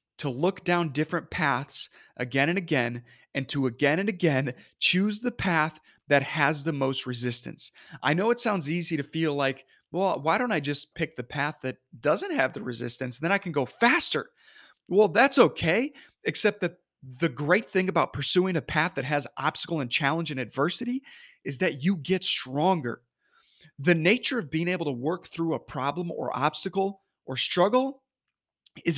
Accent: American